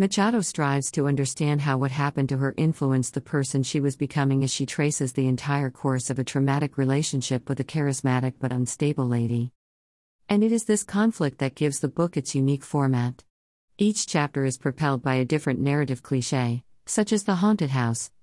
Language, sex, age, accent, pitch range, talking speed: English, female, 50-69, American, 130-160 Hz, 190 wpm